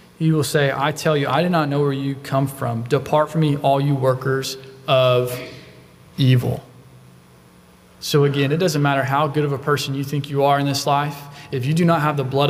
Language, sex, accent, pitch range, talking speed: English, male, American, 130-175 Hz, 220 wpm